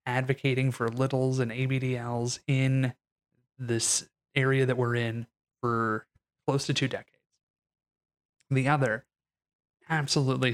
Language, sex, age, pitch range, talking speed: English, male, 20-39, 115-135 Hz, 110 wpm